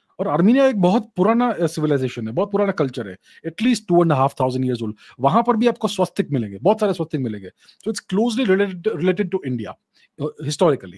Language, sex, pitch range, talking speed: English, male, 150-195 Hz, 155 wpm